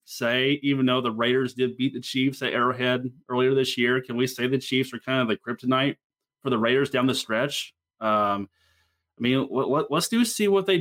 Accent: American